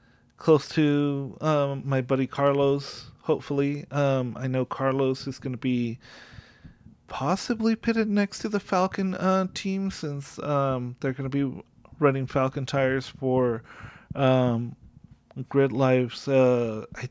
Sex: male